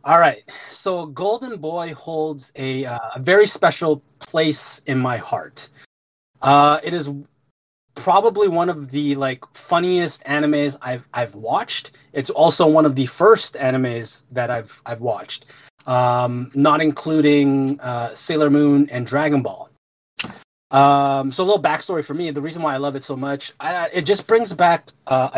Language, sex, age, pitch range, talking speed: English, male, 30-49, 125-155 Hz, 160 wpm